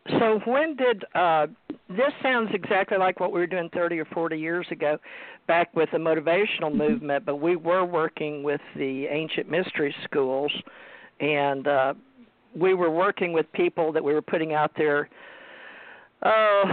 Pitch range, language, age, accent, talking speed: 145-185 Hz, English, 50-69, American, 160 wpm